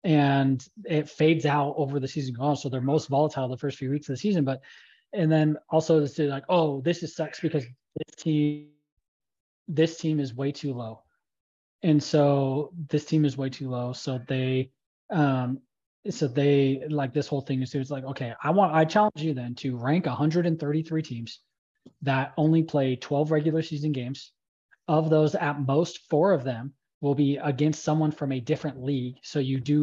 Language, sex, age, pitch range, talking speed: English, male, 20-39, 135-155 Hz, 195 wpm